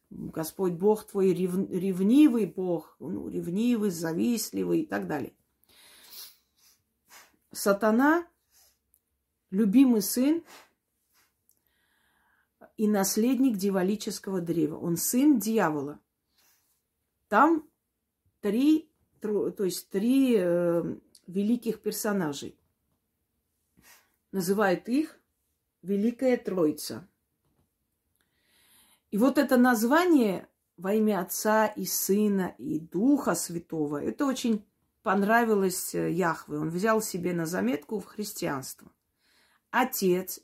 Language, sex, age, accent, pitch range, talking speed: Russian, female, 30-49, native, 175-230 Hz, 90 wpm